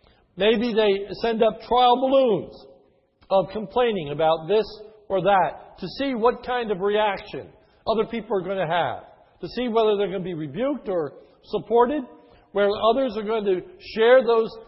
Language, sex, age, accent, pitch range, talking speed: English, male, 60-79, American, 195-235 Hz, 170 wpm